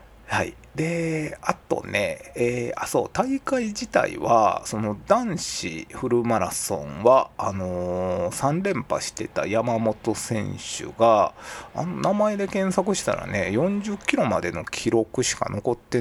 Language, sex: Japanese, male